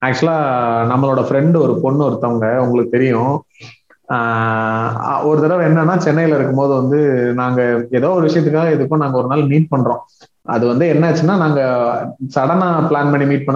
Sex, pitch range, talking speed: male, 130-160 Hz, 145 wpm